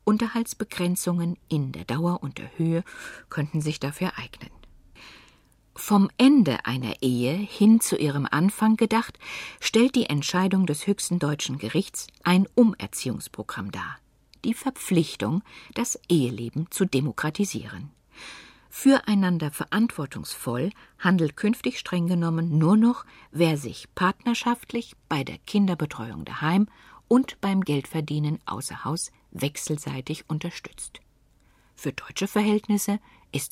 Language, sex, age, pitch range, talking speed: German, female, 50-69, 150-205 Hz, 110 wpm